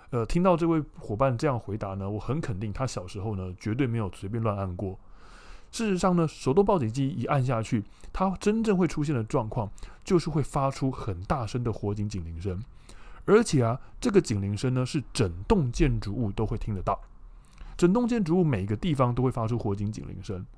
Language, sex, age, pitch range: Chinese, male, 20-39, 100-155 Hz